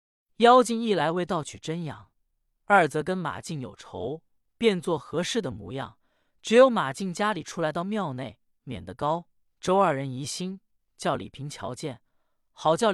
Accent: native